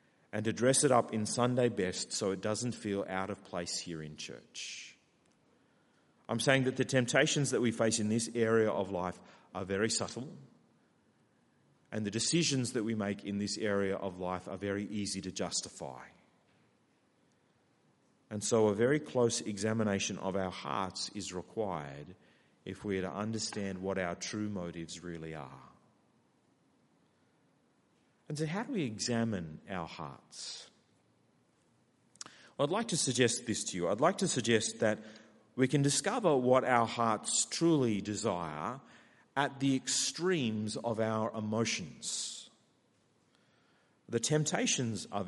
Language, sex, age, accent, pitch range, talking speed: English, male, 40-59, Australian, 95-125 Hz, 145 wpm